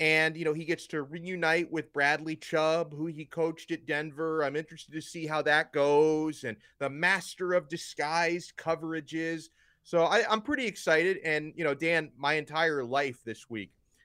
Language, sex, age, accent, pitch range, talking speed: English, male, 30-49, American, 130-165 Hz, 175 wpm